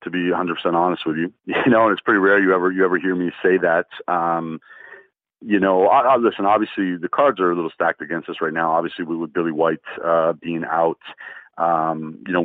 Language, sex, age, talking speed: English, male, 40-59, 240 wpm